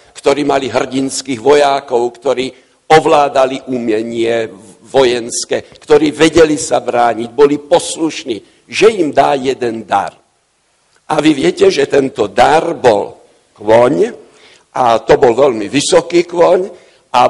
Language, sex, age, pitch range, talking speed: Slovak, male, 60-79, 135-180 Hz, 120 wpm